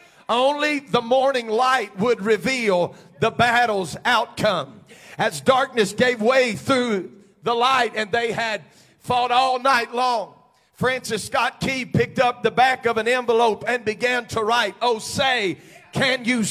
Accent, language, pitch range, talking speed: American, English, 235-300 Hz, 150 wpm